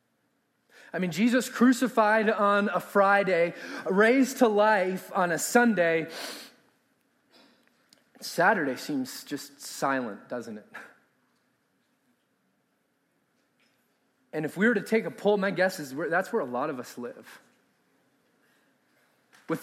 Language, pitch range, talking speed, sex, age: English, 185-235 Hz, 115 wpm, male, 30-49